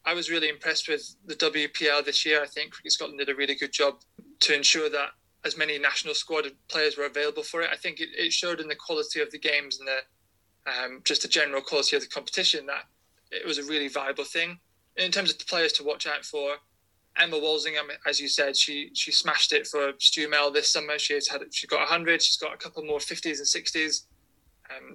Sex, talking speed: male, 225 wpm